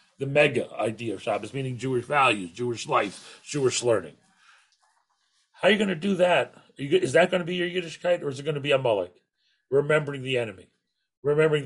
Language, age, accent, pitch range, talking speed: English, 40-59, American, 145-195 Hz, 205 wpm